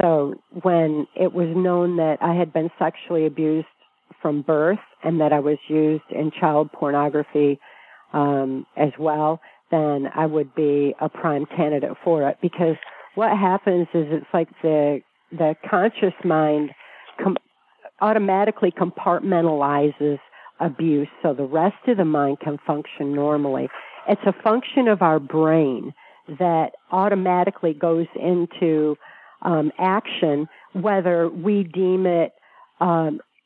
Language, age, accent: English, 50-69, American